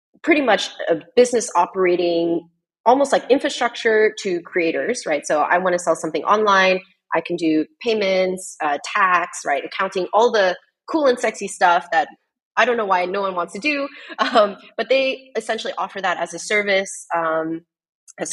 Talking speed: 175 wpm